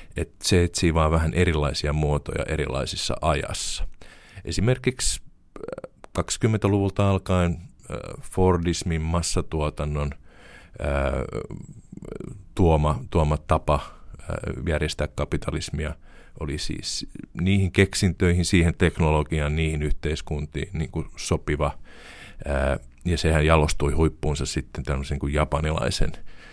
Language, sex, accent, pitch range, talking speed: Finnish, male, native, 75-90 Hz, 85 wpm